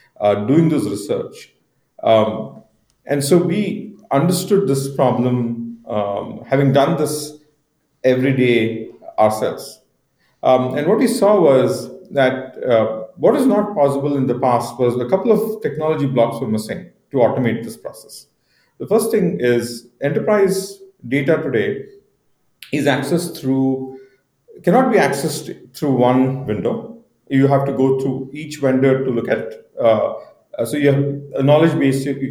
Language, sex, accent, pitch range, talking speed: English, male, Indian, 130-170 Hz, 150 wpm